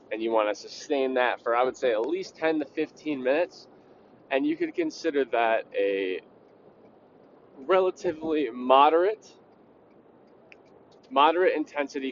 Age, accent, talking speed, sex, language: 20-39, American, 130 wpm, male, English